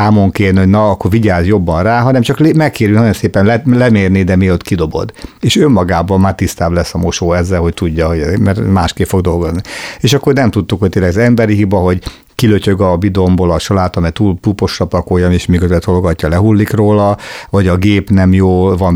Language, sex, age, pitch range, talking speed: Hungarian, male, 50-69, 90-105 Hz, 205 wpm